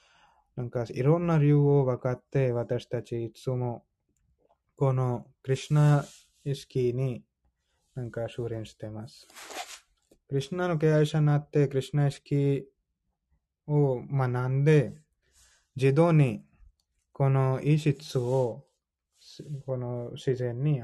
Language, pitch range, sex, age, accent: Japanese, 110-135 Hz, male, 20-39, Indian